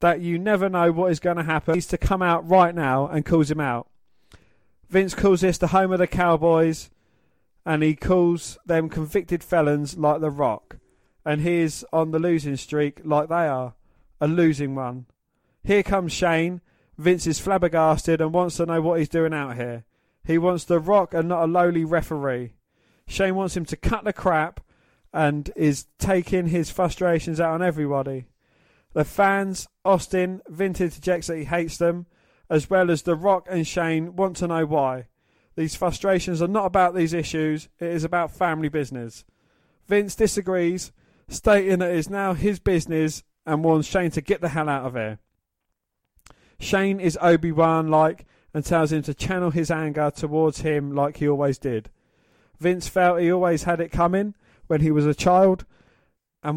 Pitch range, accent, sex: 150-180 Hz, British, male